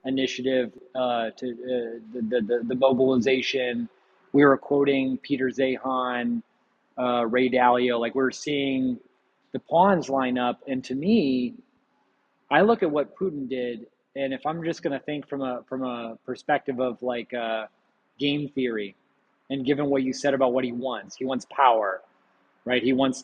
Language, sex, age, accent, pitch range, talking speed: English, male, 30-49, American, 125-140 Hz, 170 wpm